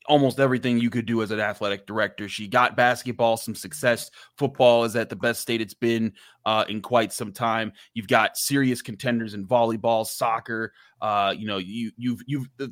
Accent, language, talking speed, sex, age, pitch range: American, English, 190 wpm, male, 20-39, 115-130 Hz